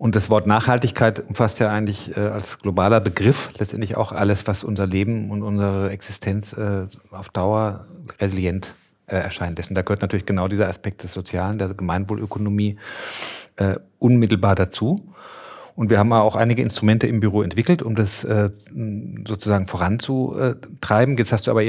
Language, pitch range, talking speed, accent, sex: German, 100-110 Hz, 150 wpm, German, male